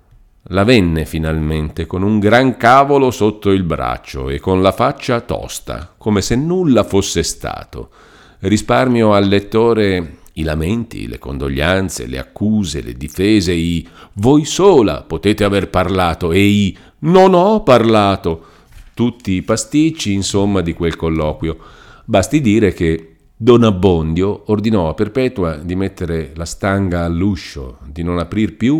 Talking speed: 140 wpm